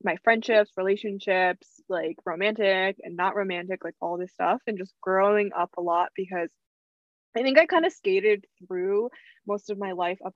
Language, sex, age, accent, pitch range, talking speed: English, female, 20-39, American, 185-225 Hz, 180 wpm